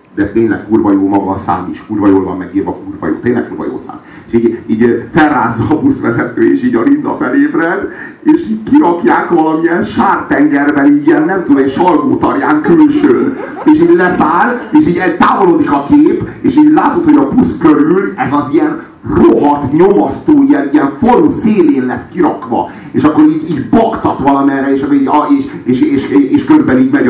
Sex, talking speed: male, 185 wpm